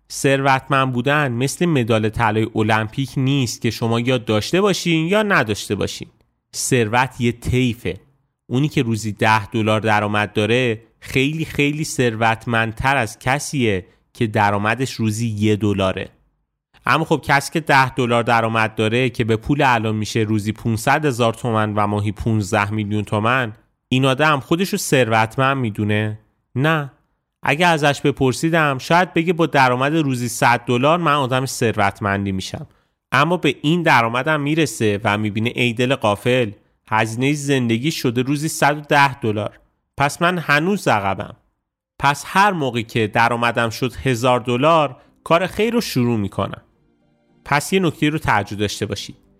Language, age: Persian, 30-49